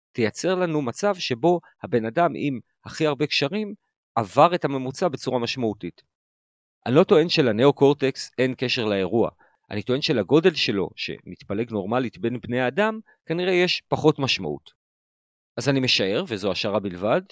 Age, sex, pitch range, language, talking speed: 40-59, male, 105-155 Hz, Hebrew, 140 wpm